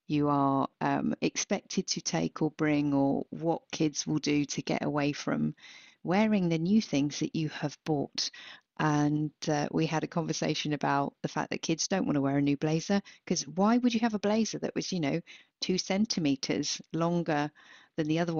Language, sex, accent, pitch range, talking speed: English, female, British, 150-215 Hz, 195 wpm